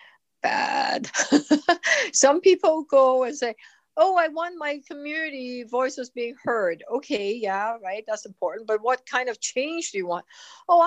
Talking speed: 155 wpm